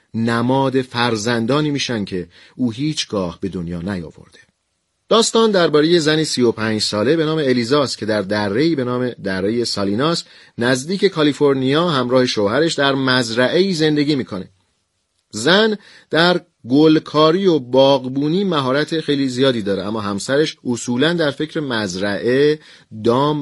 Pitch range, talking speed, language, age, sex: 110-150 Hz, 125 wpm, Persian, 40-59, male